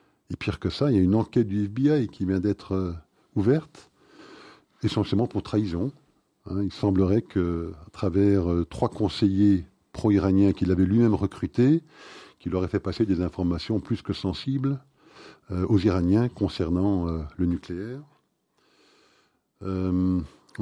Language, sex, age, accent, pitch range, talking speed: French, male, 50-69, French, 90-110 Hz, 140 wpm